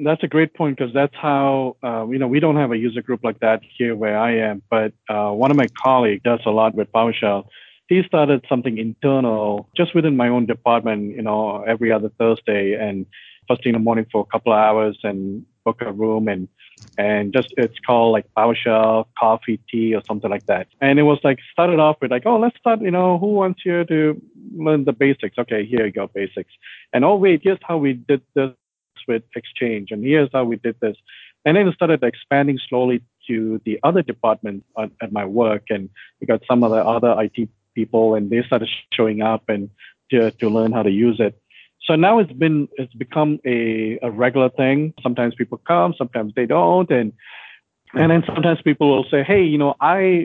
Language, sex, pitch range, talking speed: English, male, 110-145 Hz, 210 wpm